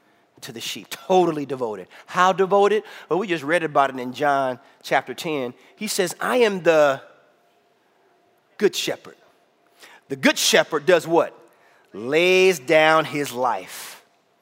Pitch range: 145-240 Hz